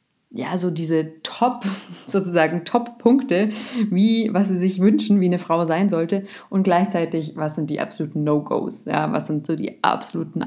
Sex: female